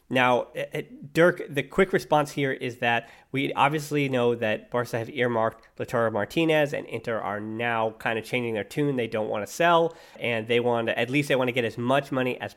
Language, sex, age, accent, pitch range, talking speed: English, male, 30-49, American, 115-140 Hz, 215 wpm